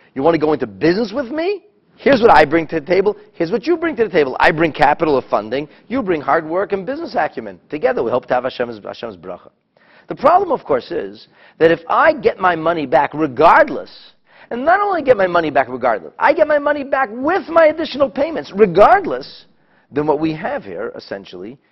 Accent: American